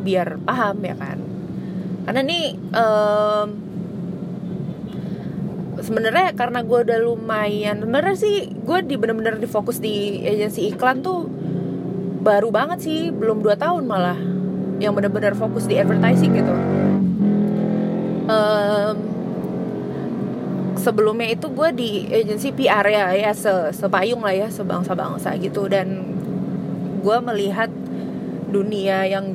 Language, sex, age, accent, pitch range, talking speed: English, female, 20-39, Indonesian, 185-210 Hz, 110 wpm